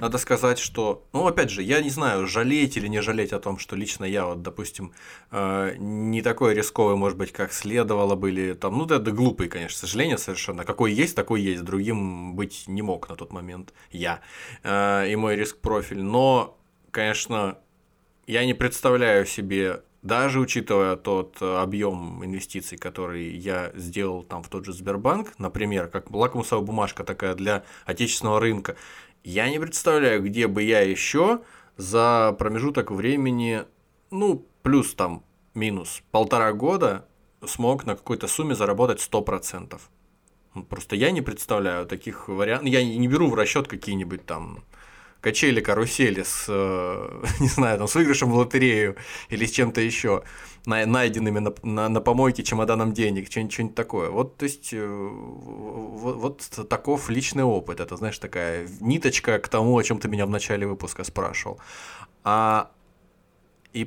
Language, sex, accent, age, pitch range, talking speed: Russian, male, native, 20-39, 95-125 Hz, 145 wpm